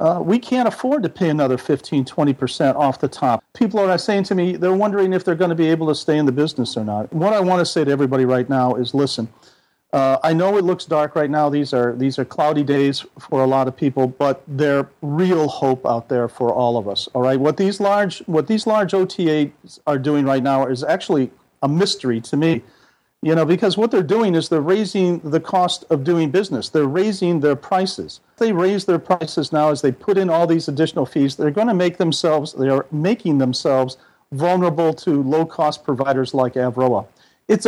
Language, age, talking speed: English, 50-69, 225 wpm